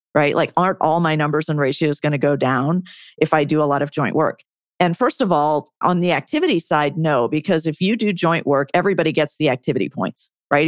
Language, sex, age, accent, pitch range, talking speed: English, female, 40-59, American, 150-175 Hz, 230 wpm